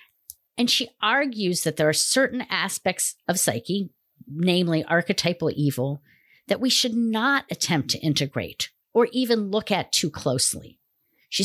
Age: 50-69